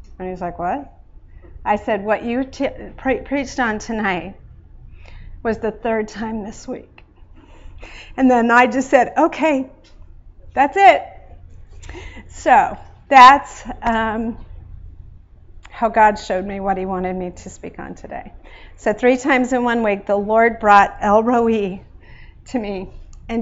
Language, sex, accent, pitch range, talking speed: English, female, American, 205-255 Hz, 145 wpm